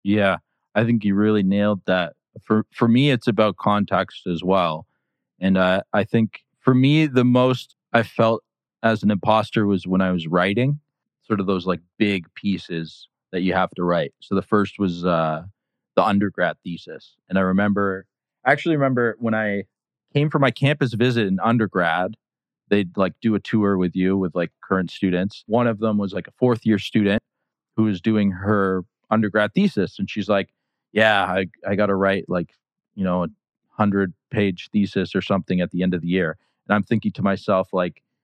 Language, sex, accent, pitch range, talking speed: English, male, American, 95-125 Hz, 190 wpm